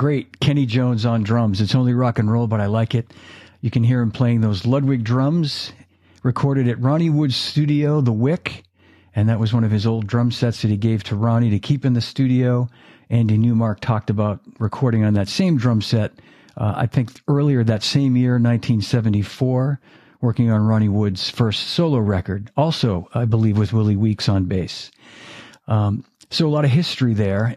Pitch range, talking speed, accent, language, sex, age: 105-130 Hz, 190 wpm, American, English, male, 50-69